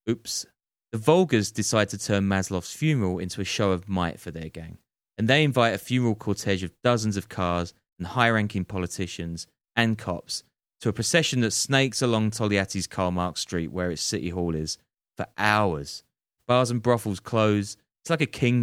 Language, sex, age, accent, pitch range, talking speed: English, male, 30-49, British, 90-125 Hz, 180 wpm